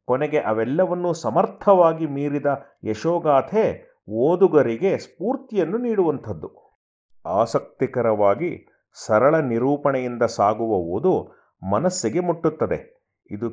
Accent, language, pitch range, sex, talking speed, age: native, Kannada, 120-155 Hz, male, 70 wpm, 30-49